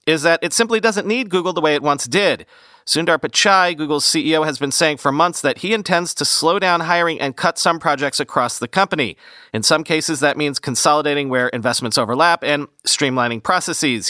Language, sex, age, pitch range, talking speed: English, male, 40-59, 135-180 Hz, 200 wpm